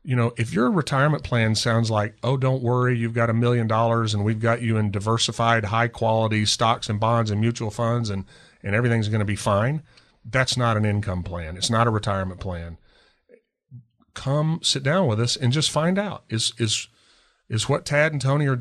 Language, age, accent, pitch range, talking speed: English, 40-59, American, 105-130 Hz, 205 wpm